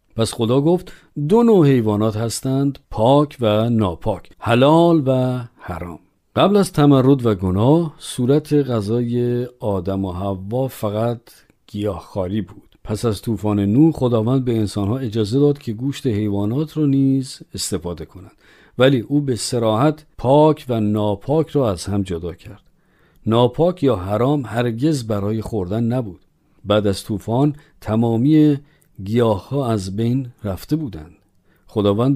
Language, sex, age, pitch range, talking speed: Persian, male, 50-69, 105-140 Hz, 135 wpm